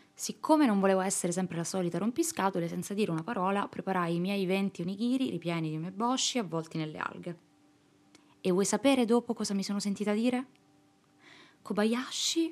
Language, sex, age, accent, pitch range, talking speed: Italian, female, 20-39, native, 170-215 Hz, 160 wpm